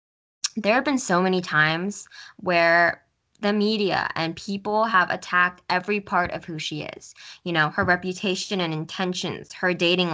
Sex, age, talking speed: female, 10-29, 160 wpm